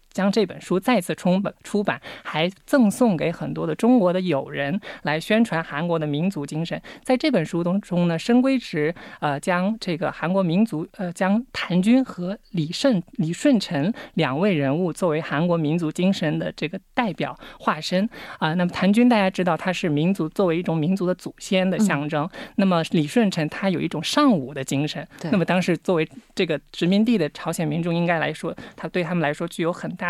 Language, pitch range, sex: Korean, 165-215 Hz, male